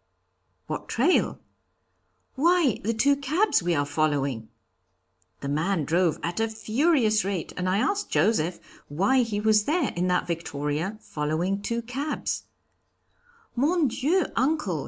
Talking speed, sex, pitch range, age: 135 wpm, female, 155-245 Hz, 50-69